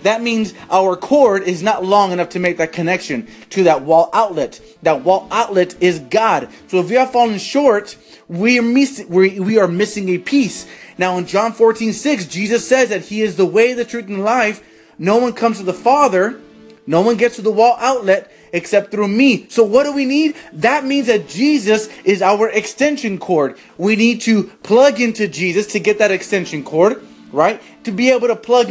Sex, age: male, 30-49